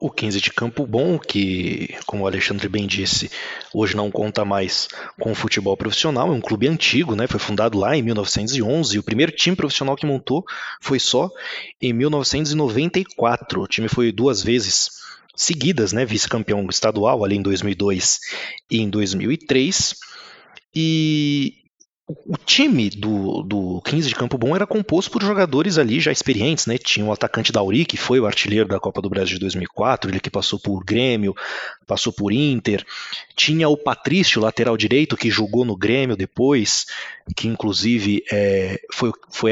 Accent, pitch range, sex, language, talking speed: Brazilian, 105-140 Hz, male, Portuguese, 165 wpm